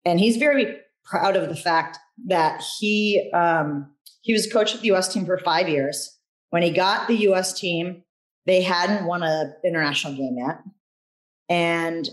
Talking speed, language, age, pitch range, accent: 170 wpm, English, 30-49, 155-195 Hz, American